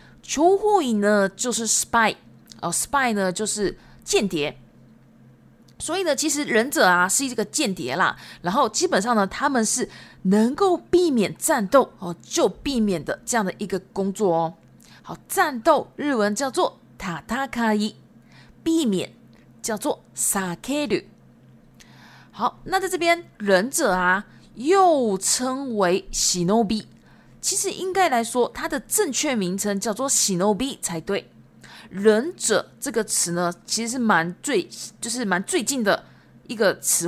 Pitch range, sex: 190-270 Hz, female